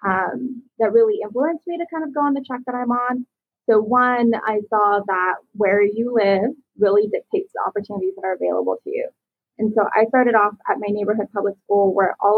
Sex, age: female, 20-39